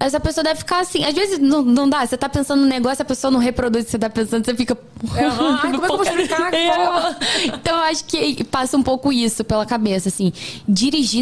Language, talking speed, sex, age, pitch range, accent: Portuguese, 225 wpm, female, 10-29, 205-270 Hz, Brazilian